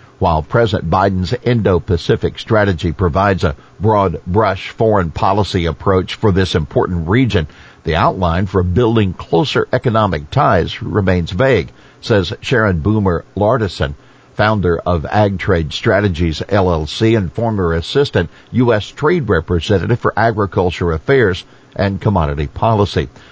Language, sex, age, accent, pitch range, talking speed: English, male, 60-79, American, 90-115 Hz, 115 wpm